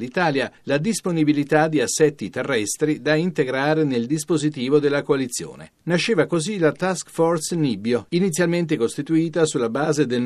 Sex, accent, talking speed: male, native, 135 wpm